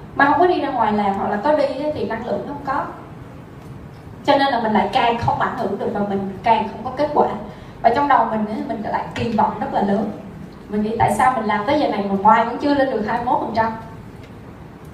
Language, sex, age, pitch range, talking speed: Vietnamese, female, 20-39, 210-260 Hz, 250 wpm